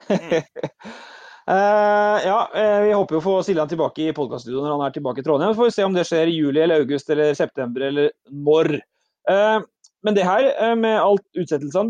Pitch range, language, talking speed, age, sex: 155-195 Hz, English, 195 wpm, 30-49, male